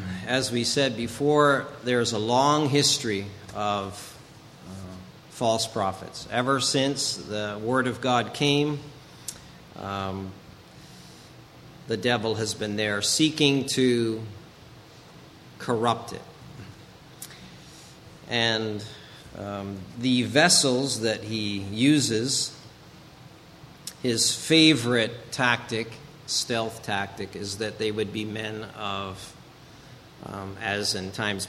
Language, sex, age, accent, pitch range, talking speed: English, male, 40-59, American, 105-135 Hz, 95 wpm